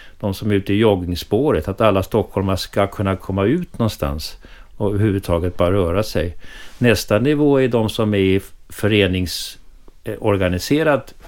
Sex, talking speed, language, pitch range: male, 140 wpm, English, 85-105 Hz